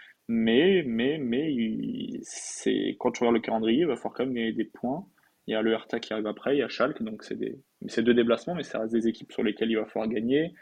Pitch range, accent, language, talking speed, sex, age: 110-130 Hz, French, French, 260 wpm, male, 20-39